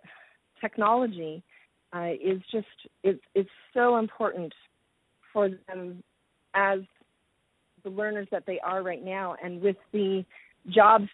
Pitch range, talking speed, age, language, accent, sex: 180-220 Hz, 110 wpm, 40-59, English, American, female